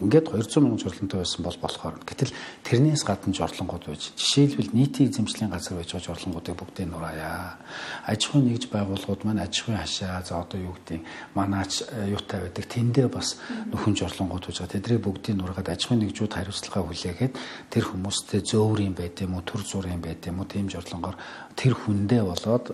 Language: English